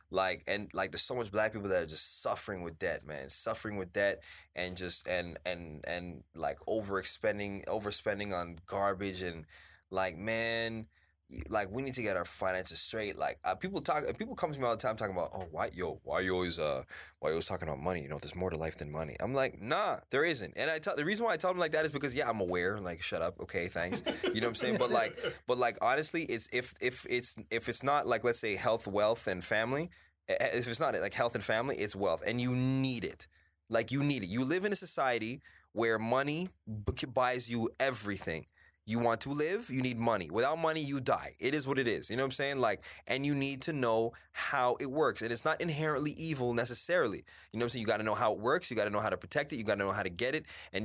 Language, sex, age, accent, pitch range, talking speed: English, male, 20-39, American, 95-140 Hz, 255 wpm